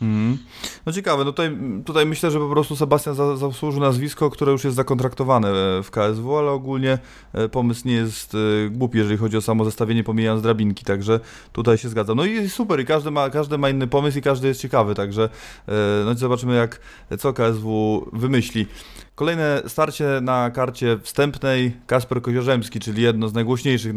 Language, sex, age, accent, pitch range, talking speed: Polish, male, 20-39, native, 115-140 Hz, 175 wpm